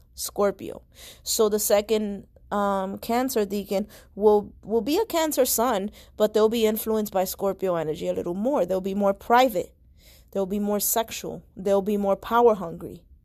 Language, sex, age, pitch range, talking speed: English, female, 20-39, 155-210 Hz, 165 wpm